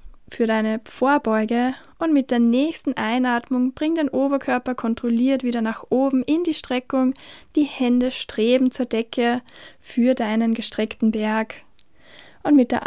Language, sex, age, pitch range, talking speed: German, female, 20-39, 230-265 Hz, 140 wpm